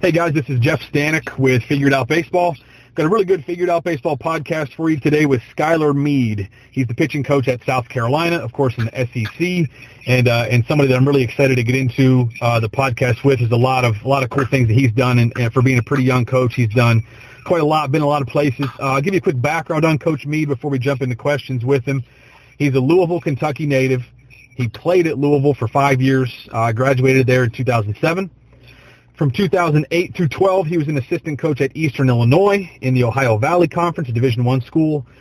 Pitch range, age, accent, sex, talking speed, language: 125-155 Hz, 40-59, American, male, 230 wpm, English